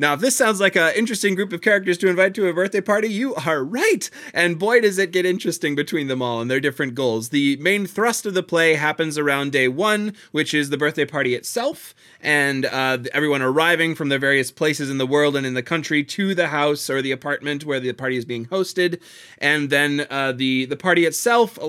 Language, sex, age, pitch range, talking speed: English, male, 20-39, 140-180 Hz, 230 wpm